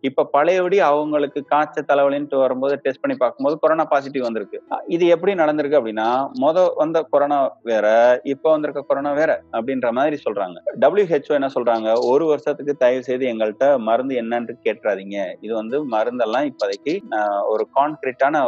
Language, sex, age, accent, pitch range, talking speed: Tamil, male, 30-49, native, 125-160 Hz, 120 wpm